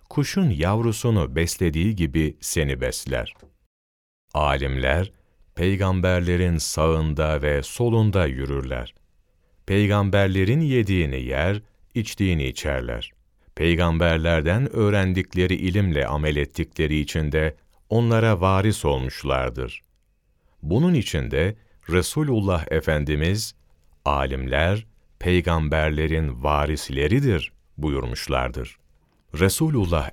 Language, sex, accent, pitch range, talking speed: Turkish, male, native, 75-100 Hz, 70 wpm